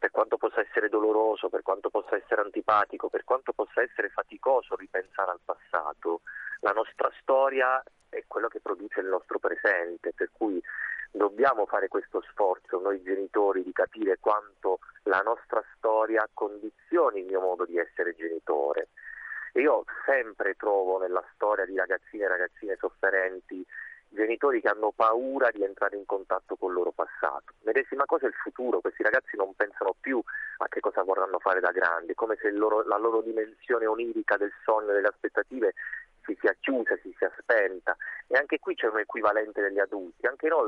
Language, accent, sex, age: Italian, native, male, 30-49